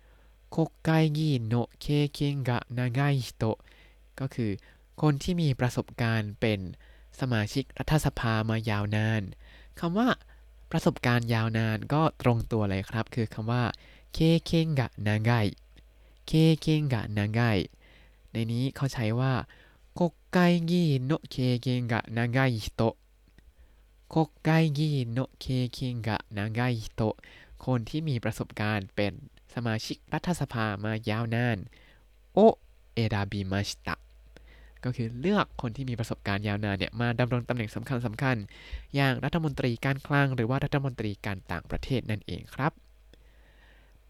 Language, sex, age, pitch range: Thai, male, 20-39, 105-140 Hz